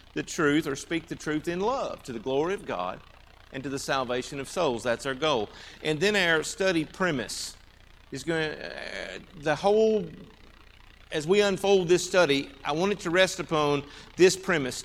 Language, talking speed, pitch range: English, 185 wpm, 135-175 Hz